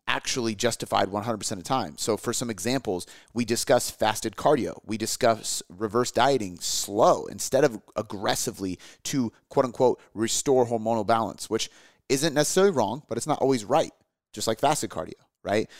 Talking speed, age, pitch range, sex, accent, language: 160 wpm, 30-49, 110-135 Hz, male, American, English